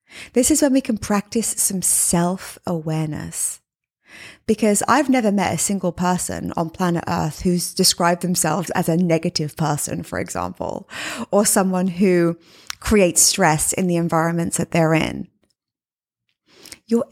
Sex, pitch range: female, 175-225 Hz